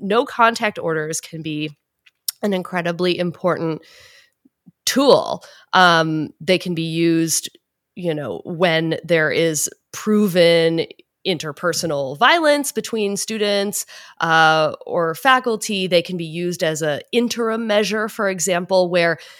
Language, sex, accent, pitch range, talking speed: English, female, American, 160-200 Hz, 120 wpm